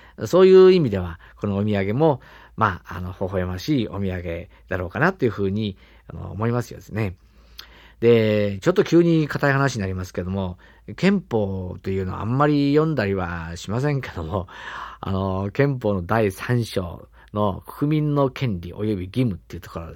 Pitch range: 90-140 Hz